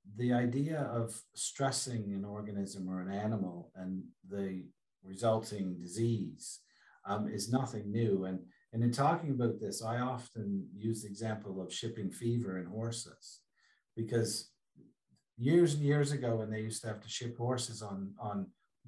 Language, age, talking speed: English, 50-69, 155 wpm